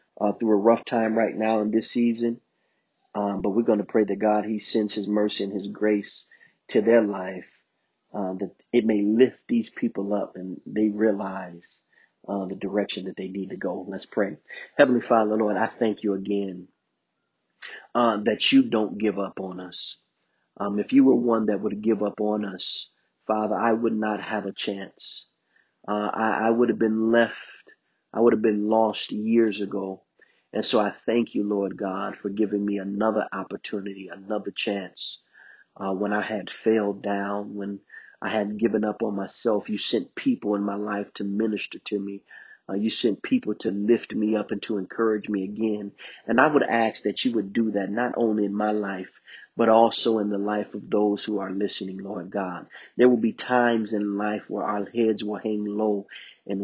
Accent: American